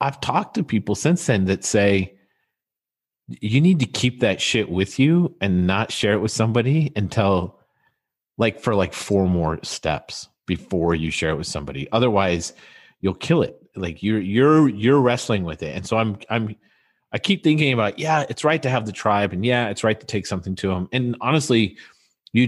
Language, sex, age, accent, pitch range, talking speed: English, male, 40-59, American, 85-120 Hz, 195 wpm